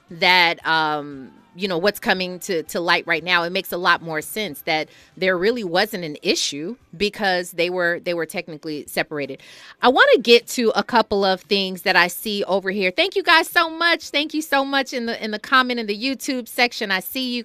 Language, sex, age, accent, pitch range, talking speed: English, female, 30-49, American, 175-255 Hz, 225 wpm